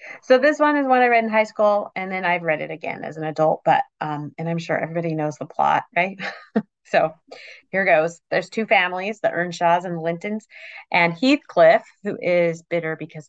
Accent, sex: American, female